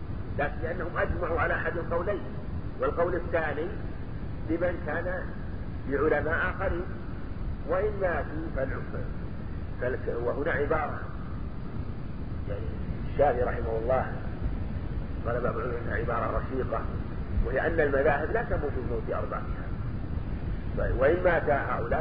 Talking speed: 100 wpm